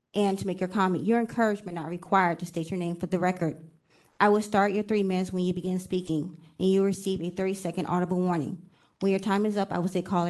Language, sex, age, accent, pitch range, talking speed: English, female, 20-39, American, 175-195 Hz, 250 wpm